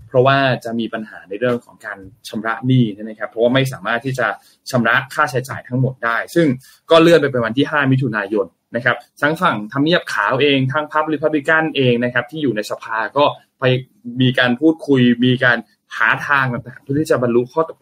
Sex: male